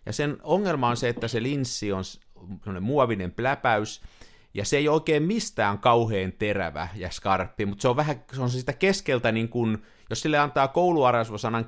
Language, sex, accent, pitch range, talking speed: Finnish, male, native, 100-145 Hz, 175 wpm